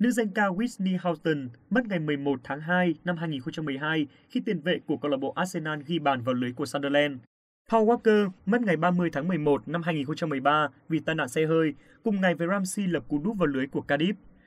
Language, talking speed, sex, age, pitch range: Vietnamese, 210 wpm, male, 20-39, 150-195 Hz